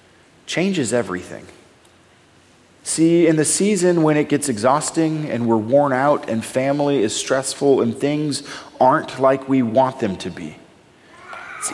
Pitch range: 145-210 Hz